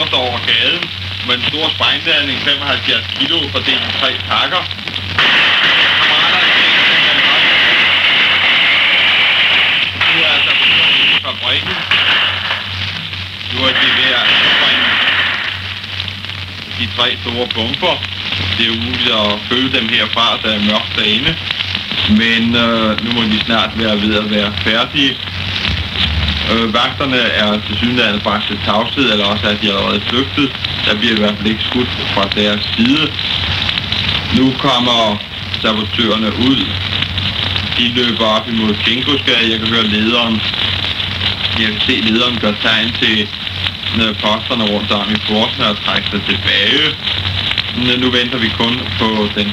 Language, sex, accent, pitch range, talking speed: Danish, male, native, 100-115 Hz, 130 wpm